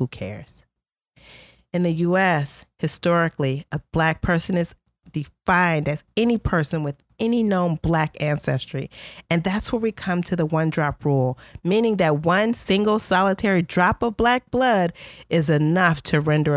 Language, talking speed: English, 150 wpm